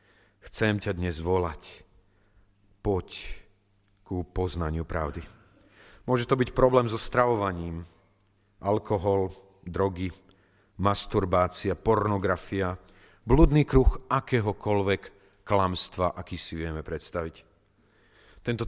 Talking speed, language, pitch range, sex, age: 85 wpm, Slovak, 90-110 Hz, male, 40-59